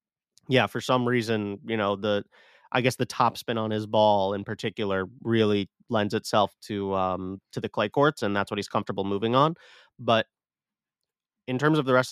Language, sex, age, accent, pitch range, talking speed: English, male, 30-49, American, 105-130 Hz, 190 wpm